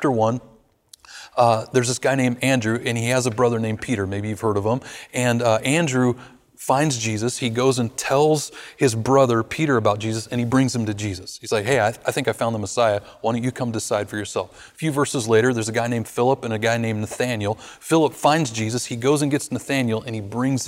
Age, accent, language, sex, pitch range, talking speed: 30-49, American, English, male, 110-130 Hz, 240 wpm